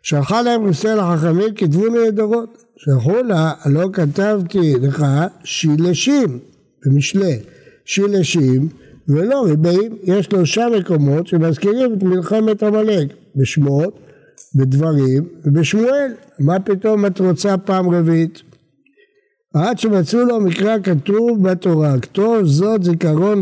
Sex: male